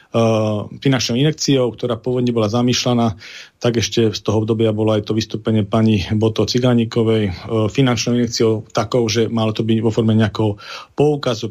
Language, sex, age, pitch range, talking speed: Slovak, male, 40-59, 110-120 Hz, 150 wpm